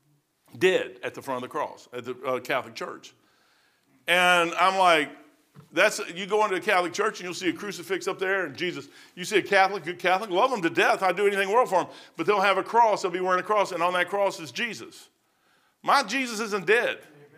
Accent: American